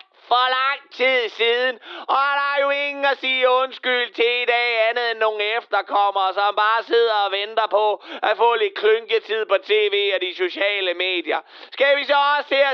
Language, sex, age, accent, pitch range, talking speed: Danish, male, 30-49, native, 180-280 Hz, 185 wpm